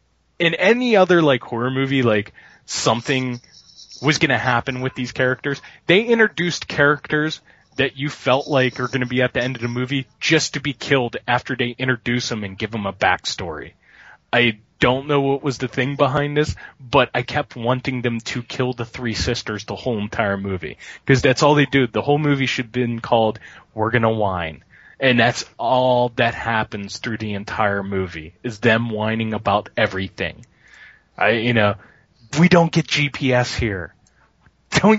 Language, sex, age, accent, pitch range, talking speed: English, male, 20-39, American, 110-145 Hz, 180 wpm